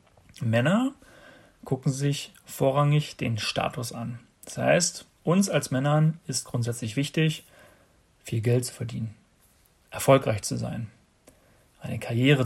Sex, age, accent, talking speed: male, 40-59, German, 115 wpm